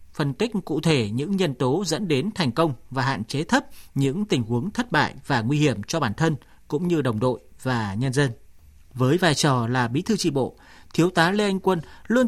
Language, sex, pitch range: Vietnamese, male, 125-185 Hz